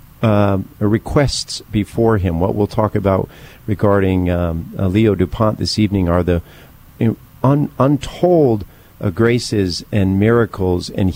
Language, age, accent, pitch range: English, 50-69, American, 95-120 Hz